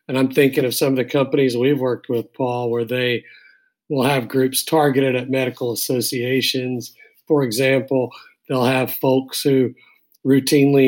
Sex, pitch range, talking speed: male, 130-165 Hz, 155 wpm